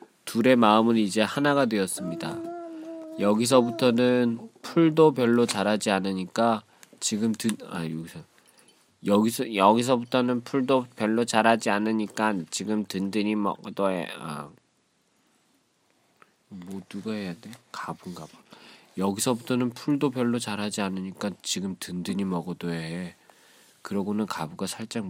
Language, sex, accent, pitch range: Korean, male, native, 90-120 Hz